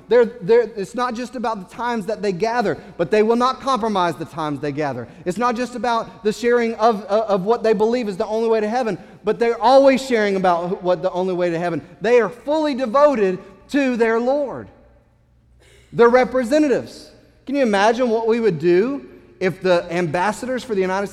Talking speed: 200 wpm